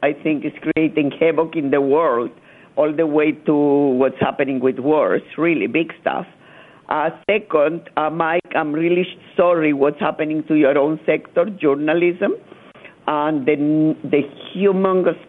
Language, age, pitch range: English, 50-69, 145-170 Hz